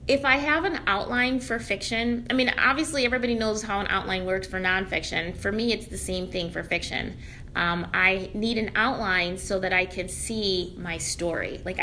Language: English